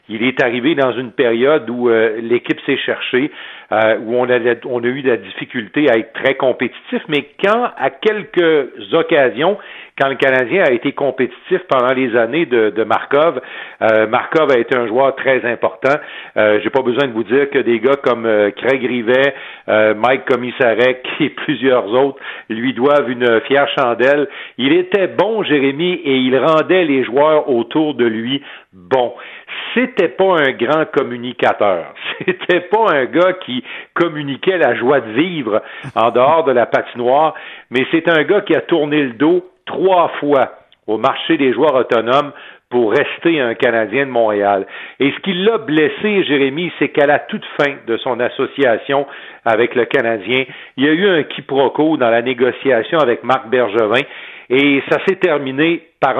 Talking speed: 175 wpm